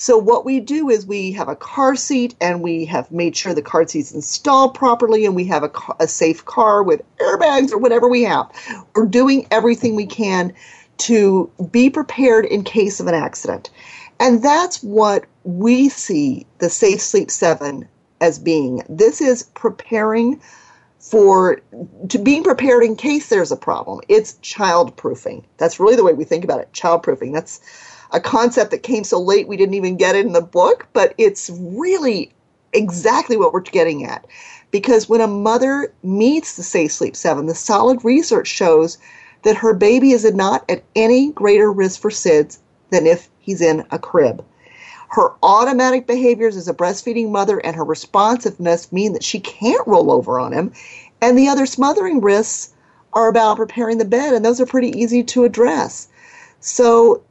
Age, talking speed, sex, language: 40-59, 180 wpm, female, English